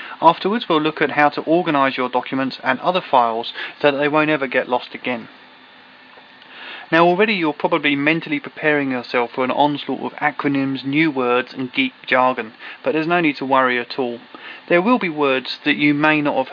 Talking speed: 195 wpm